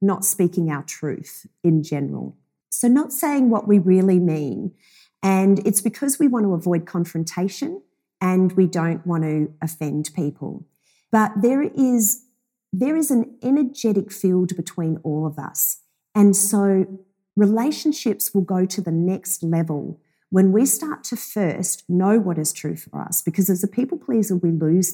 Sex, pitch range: female, 160-205 Hz